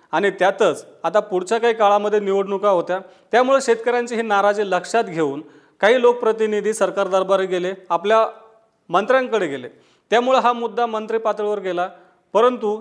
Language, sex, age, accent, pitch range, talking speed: Marathi, male, 40-59, native, 185-230 Hz, 140 wpm